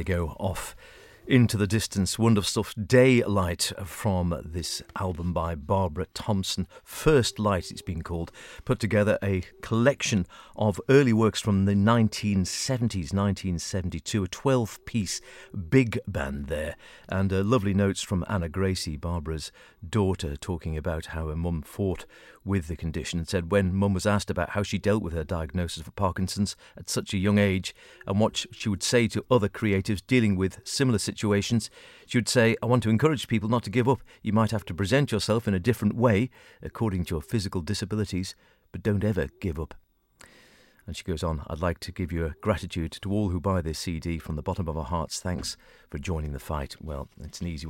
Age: 50-69